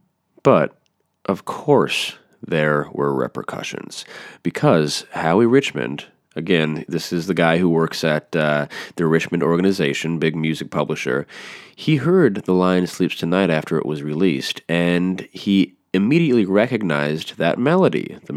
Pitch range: 80-95 Hz